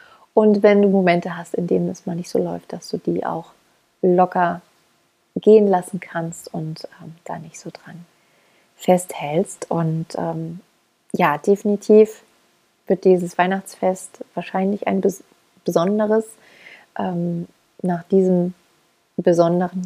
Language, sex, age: German, female, 30-49